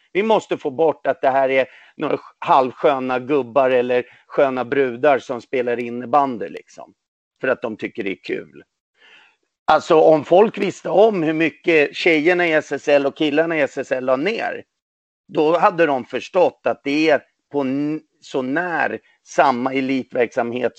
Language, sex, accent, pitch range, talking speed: Swedish, male, native, 140-195 Hz, 155 wpm